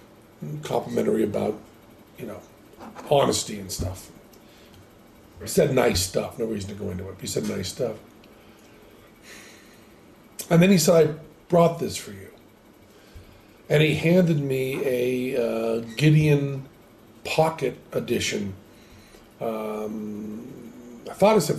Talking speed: 120 wpm